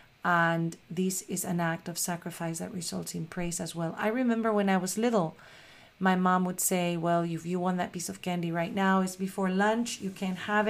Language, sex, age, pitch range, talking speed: English, female, 40-59, 170-205 Hz, 220 wpm